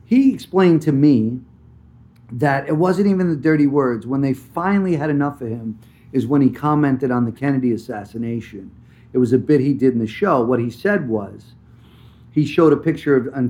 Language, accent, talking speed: English, American, 195 wpm